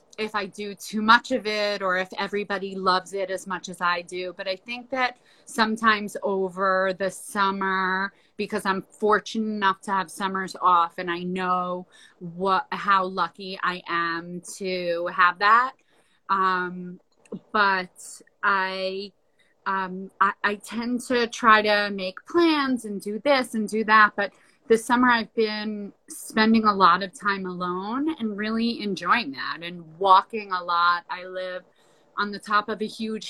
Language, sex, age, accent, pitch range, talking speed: English, female, 30-49, American, 185-215 Hz, 160 wpm